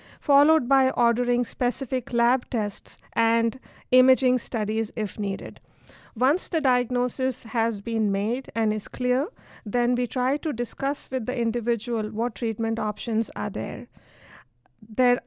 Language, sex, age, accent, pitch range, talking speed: English, female, 50-69, Indian, 225-255 Hz, 135 wpm